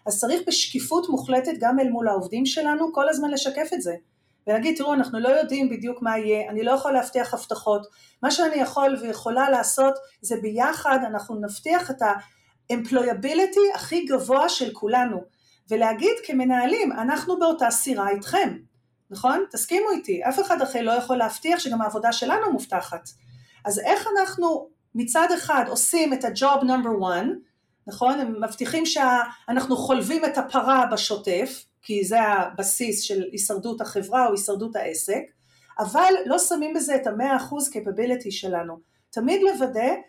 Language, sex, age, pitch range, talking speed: Hebrew, female, 40-59, 215-295 Hz, 150 wpm